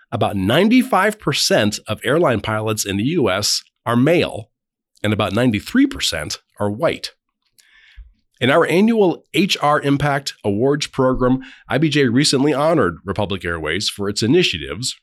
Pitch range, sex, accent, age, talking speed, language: 100-135 Hz, male, American, 40-59, 120 wpm, English